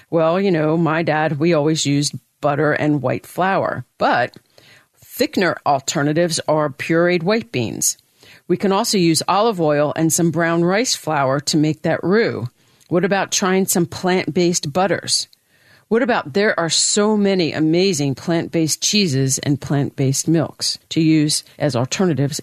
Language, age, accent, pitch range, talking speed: English, 50-69, American, 145-195 Hz, 150 wpm